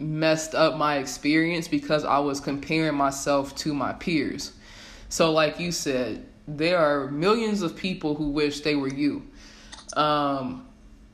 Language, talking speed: English, 145 wpm